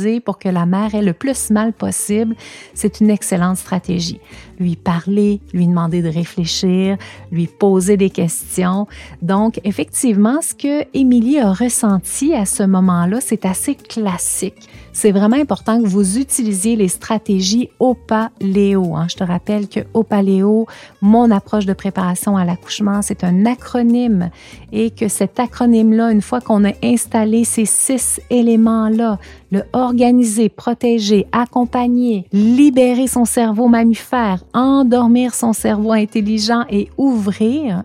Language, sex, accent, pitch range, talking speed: French, female, Canadian, 190-230 Hz, 135 wpm